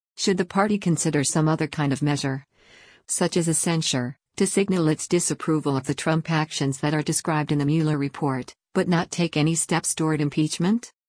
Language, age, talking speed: English, 50-69, 190 wpm